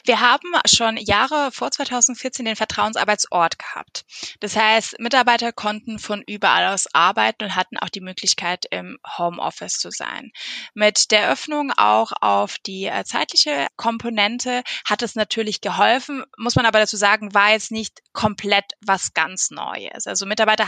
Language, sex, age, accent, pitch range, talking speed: German, female, 20-39, German, 195-240 Hz, 150 wpm